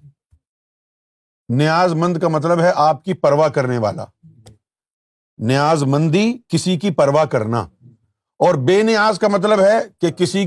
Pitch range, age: 135-195 Hz, 50-69